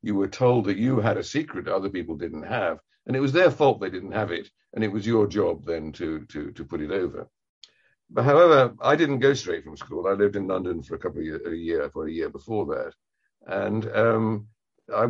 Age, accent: 60-79, British